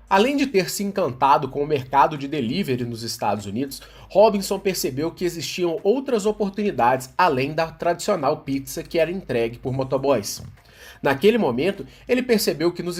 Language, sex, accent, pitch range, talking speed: Portuguese, male, Brazilian, 140-200 Hz, 155 wpm